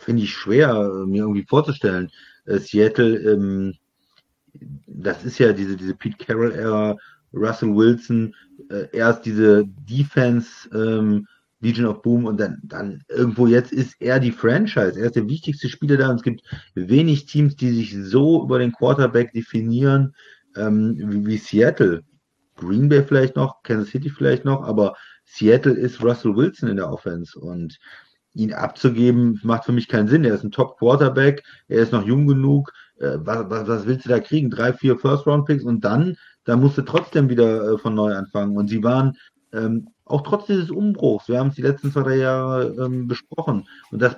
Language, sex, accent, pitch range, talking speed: German, male, German, 110-140 Hz, 175 wpm